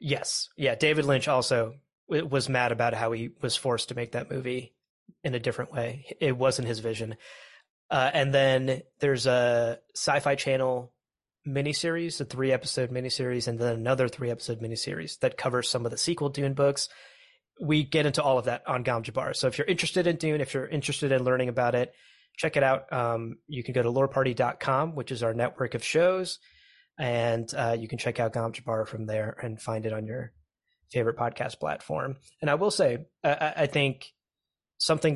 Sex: male